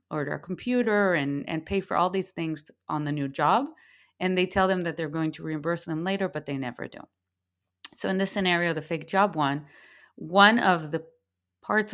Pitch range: 150-190 Hz